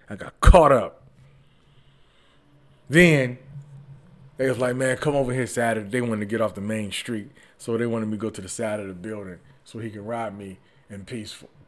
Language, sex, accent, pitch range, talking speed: English, male, American, 95-125 Hz, 205 wpm